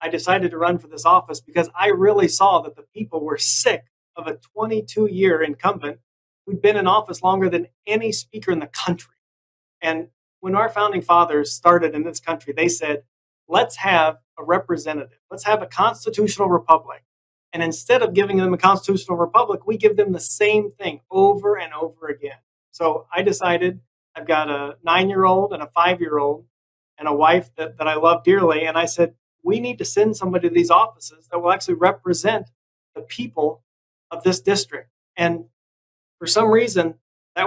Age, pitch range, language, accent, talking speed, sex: 40-59, 160-200 Hz, English, American, 180 wpm, male